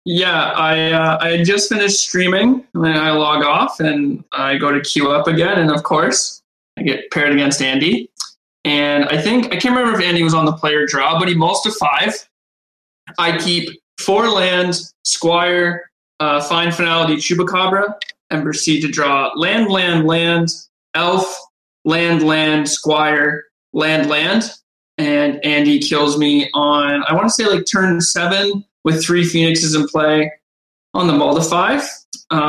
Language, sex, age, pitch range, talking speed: English, male, 20-39, 150-175 Hz, 165 wpm